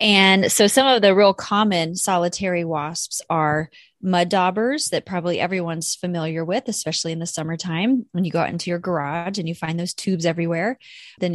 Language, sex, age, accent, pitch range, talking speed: English, female, 30-49, American, 170-205 Hz, 185 wpm